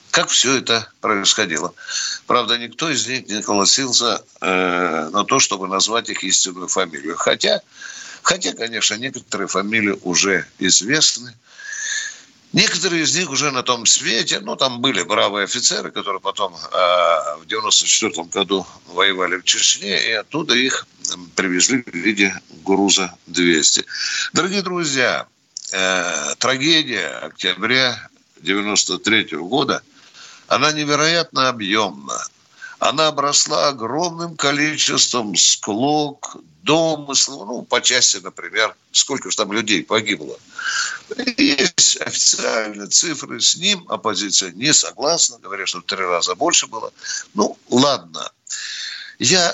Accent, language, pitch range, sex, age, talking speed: native, Russian, 100-155 Hz, male, 60-79, 115 wpm